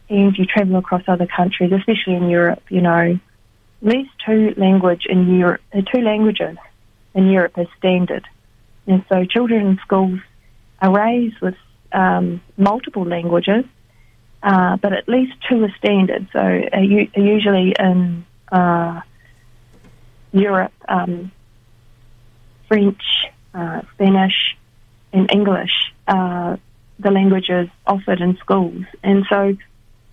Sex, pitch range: female, 125-200 Hz